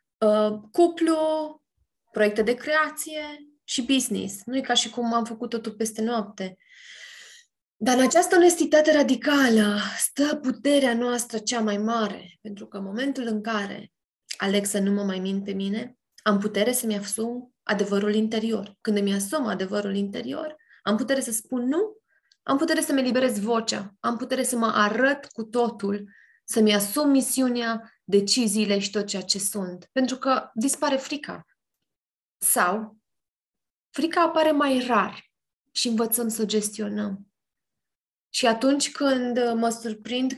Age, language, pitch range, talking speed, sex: 20-39, Romanian, 205-270 Hz, 145 wpm, female